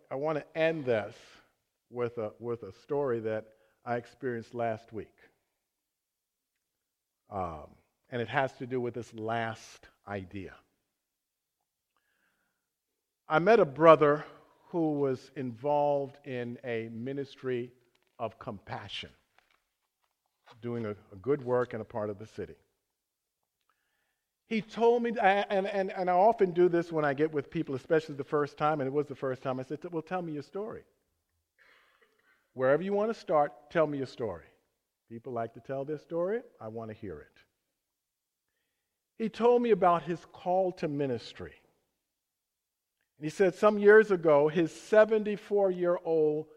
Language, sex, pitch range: English, male, 120-170 Hz